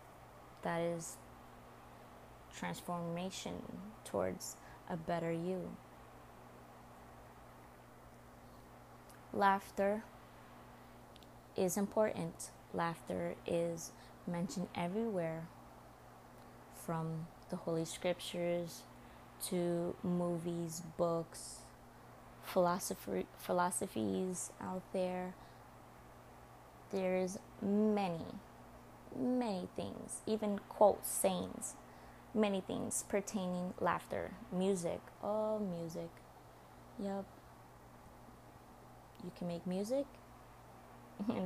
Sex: female